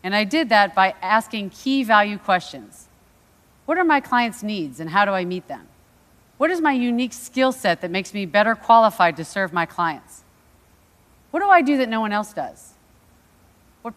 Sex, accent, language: female, American, Korean